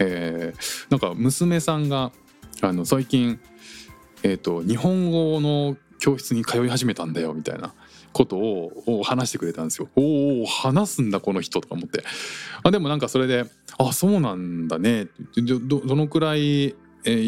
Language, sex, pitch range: Japanese, male, 95-155 Hz